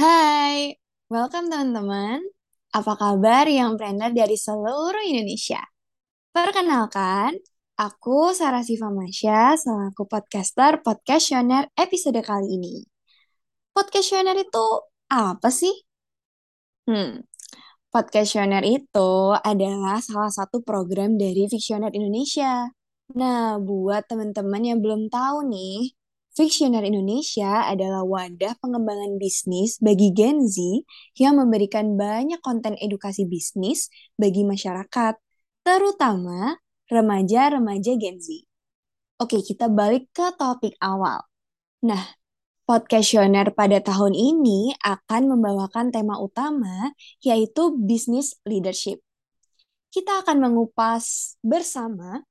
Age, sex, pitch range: 20-39, female, 205-270 Hz